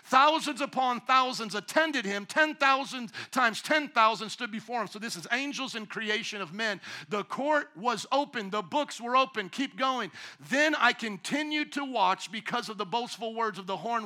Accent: American